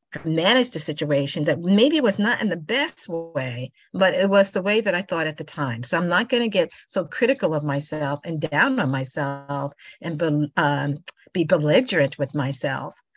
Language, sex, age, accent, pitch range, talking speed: English, female, 50-69, American, 150-230 Hz, 195 wpm